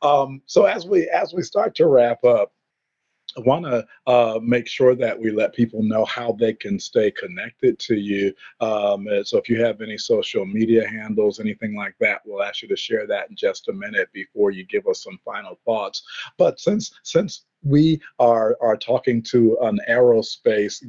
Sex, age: male, 50-69